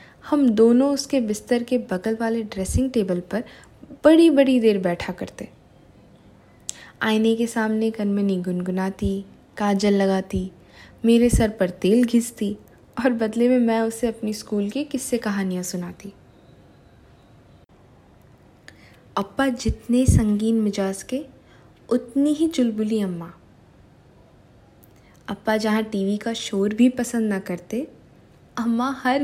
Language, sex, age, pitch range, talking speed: Hindi, female, 20-39, 200-255 Hz, 120 wpm